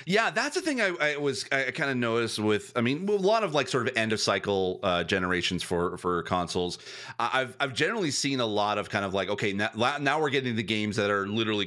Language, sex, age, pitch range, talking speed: English, male, 30-49, 100-130 Hz, 250 wpm